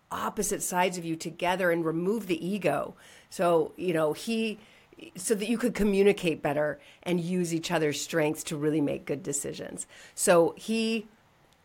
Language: English